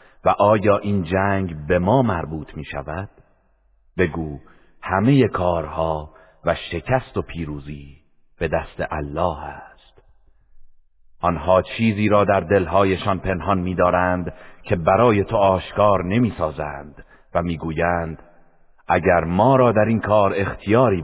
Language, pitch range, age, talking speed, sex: Persian, 80-105 Hz, 50-69, 115 wpm, male